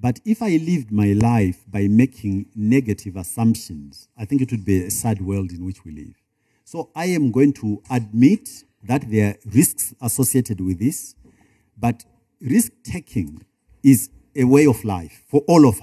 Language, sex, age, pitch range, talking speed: English, male, 50-69, 100-135 Hz, 170 wpm